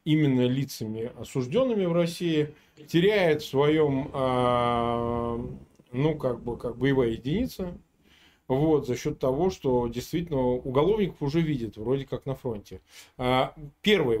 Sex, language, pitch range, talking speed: male, Russian, 120-165 Hz, 120 wpm